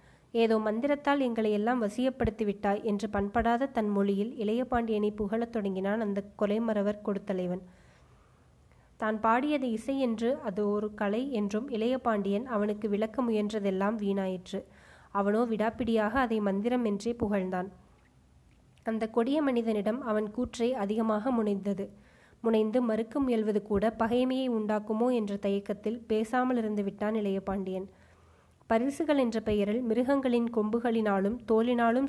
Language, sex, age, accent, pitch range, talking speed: Tamil, female, 20-39, native, 205-235 Hz, 105 wpm